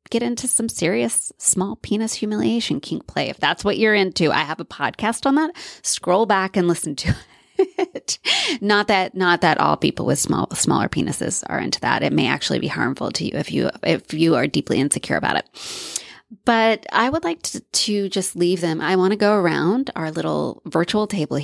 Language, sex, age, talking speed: English, female, 20-39, 205 wpm